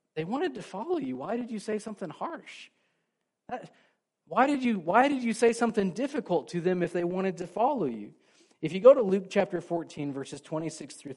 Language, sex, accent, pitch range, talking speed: English, male, American, 140-200 Hz, 210 wpm